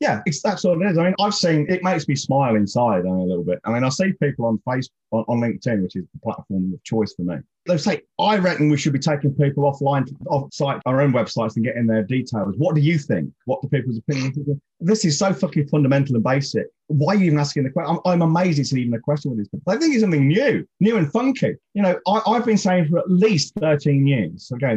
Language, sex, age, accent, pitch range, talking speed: English, male, 30-49, British, 115-170 Hz, 265 wpm